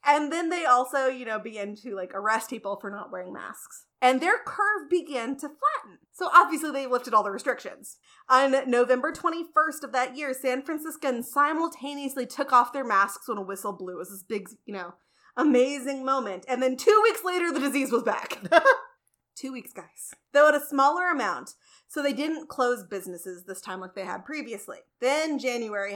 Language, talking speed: English, 190 wpm